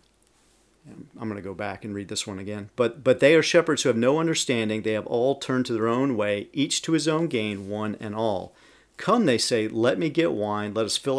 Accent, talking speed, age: American, 240 wpm, 40-59